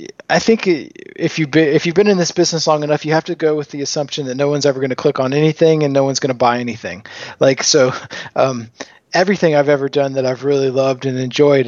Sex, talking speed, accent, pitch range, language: male, 250 wpm, American, 130-155 Hz, English